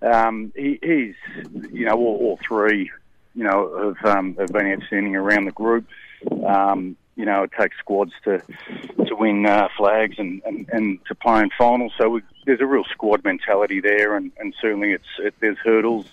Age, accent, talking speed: 40-59, Australian, 190 wpm